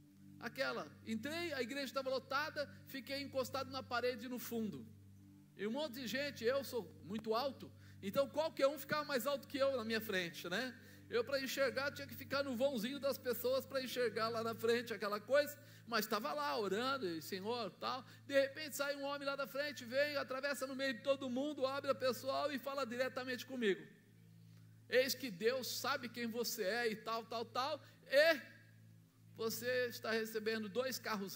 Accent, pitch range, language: Brazilian, 185-275 Hz, Portuguese